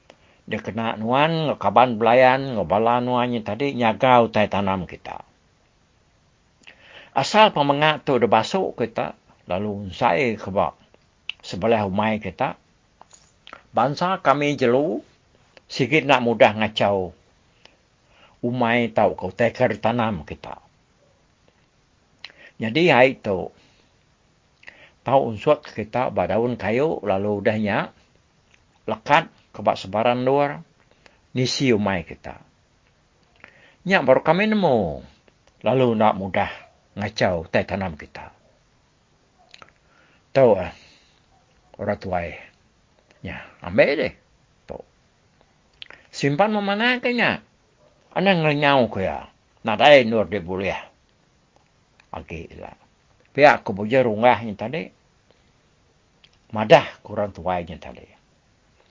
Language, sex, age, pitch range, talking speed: English, male, 60-79, 105-140 Hz, 95 wpm